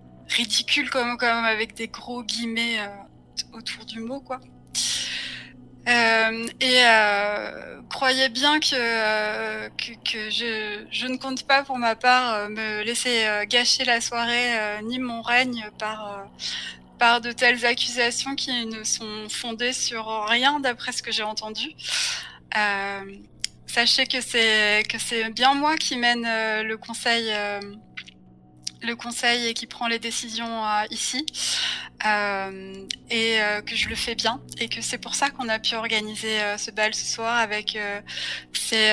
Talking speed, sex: 160 wpm, female